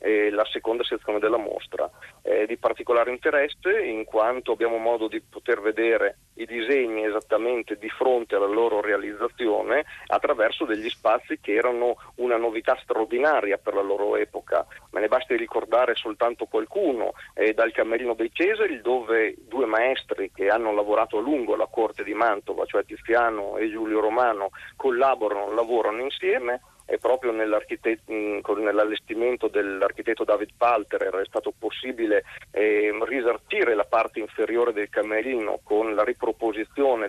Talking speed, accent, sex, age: 140 wpm, native, male, 40-59